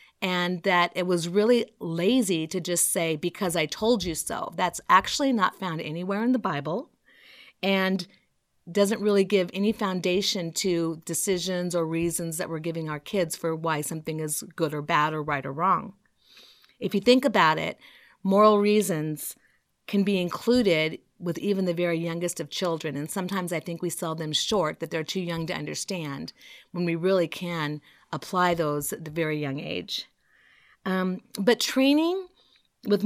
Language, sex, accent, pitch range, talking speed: English, female, American, 165-205 Hz, 170 wpm